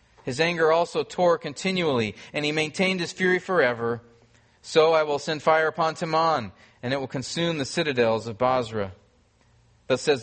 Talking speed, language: 165 wpm, English